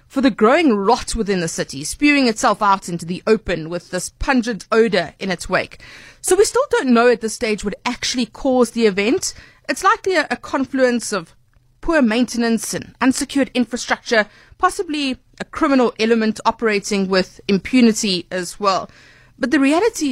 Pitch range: 195-275 Hz